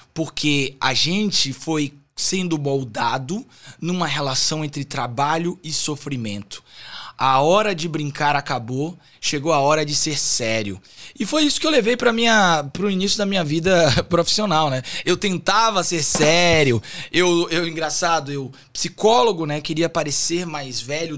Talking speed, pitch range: 145 wpm, 140-190 Hz